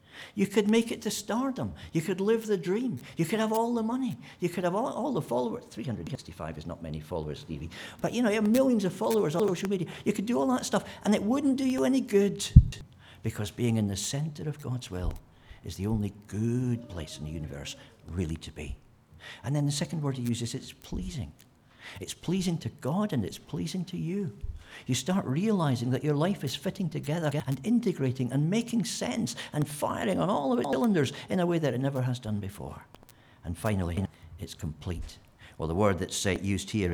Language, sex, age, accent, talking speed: English, male, 60-79, British, 215 wpm